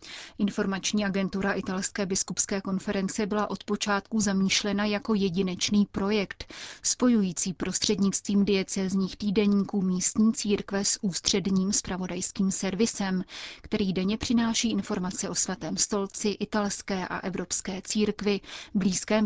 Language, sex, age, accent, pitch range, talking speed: Czech, female, 30-49, native, 190-210 Hz, 105 wpm